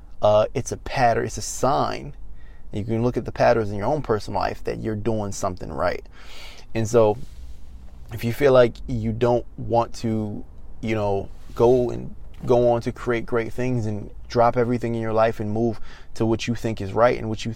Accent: American